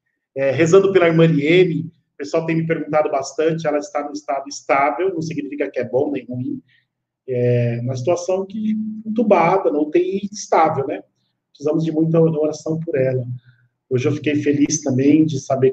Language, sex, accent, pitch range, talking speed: Portuguese, male, Brazilian, 125-150 Hz, 170 wpm